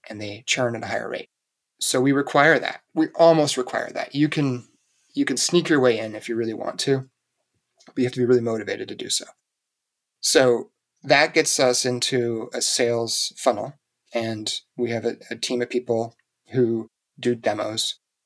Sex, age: male, 30-49